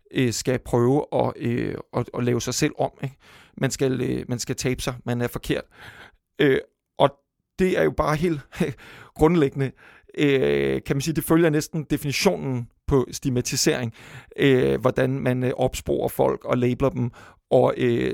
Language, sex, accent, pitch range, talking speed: Danish, male, native, 120-140 Hz, 135 wpm